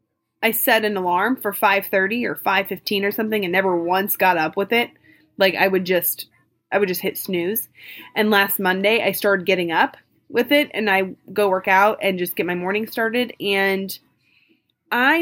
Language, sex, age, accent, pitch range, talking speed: English, female, 20-39, American, 190-240 Hz, 190 wpm